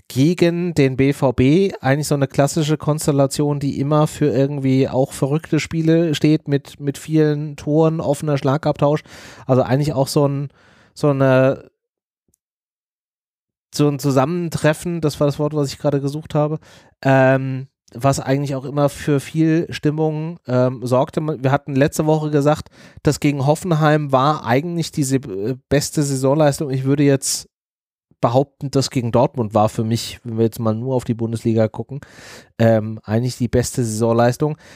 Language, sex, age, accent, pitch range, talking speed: German, male, 30-49, German, 135-155 Hz, 155 wpm